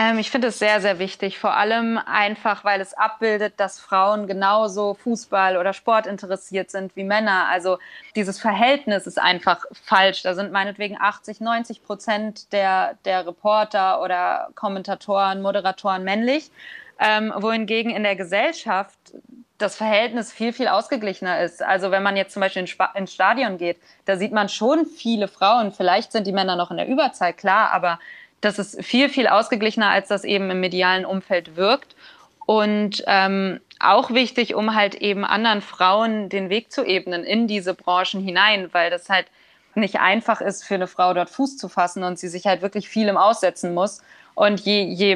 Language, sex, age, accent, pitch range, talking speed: German, female, 20-39, German, 190-220 Hz, 175 wpm